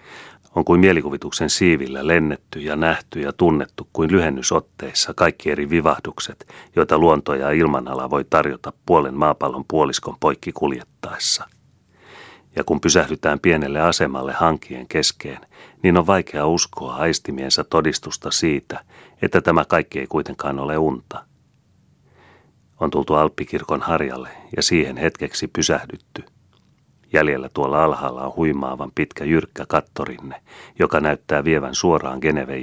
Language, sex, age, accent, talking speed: Finnish, male, 40-59, native, 125 wpm